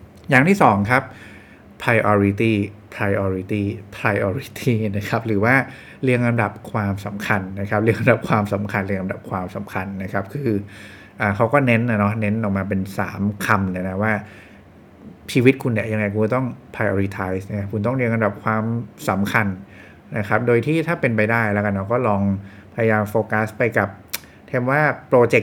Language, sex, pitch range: English, male, 100-115 Hz